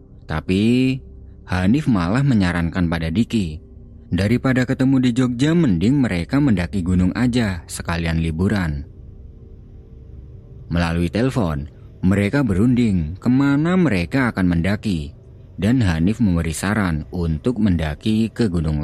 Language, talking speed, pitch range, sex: Indonesian, 105 wpm, 80-115 Hz, male